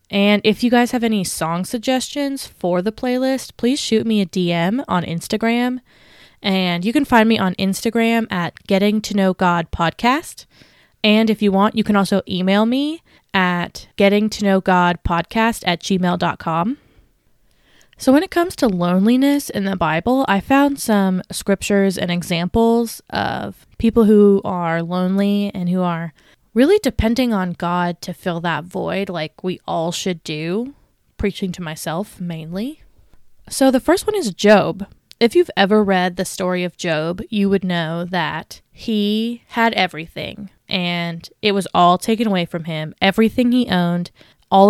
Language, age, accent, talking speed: English, 20-39, American, 165 wpm